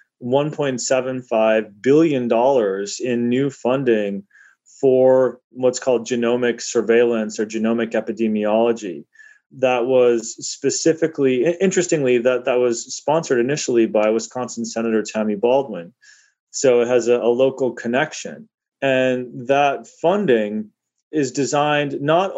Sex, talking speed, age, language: male, 105 wpm, 30-49, English